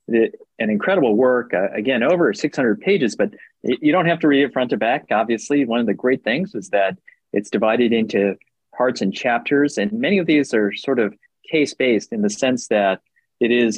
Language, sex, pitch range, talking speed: English, male, 105-135 Hz, 200 wpm